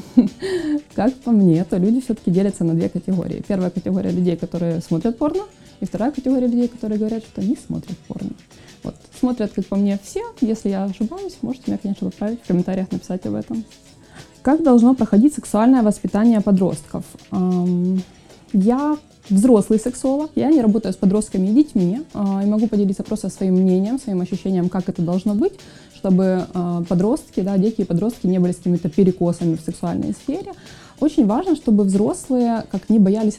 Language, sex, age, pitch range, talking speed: Russian, female, 20-39, 180-235 Hz, 165 wpm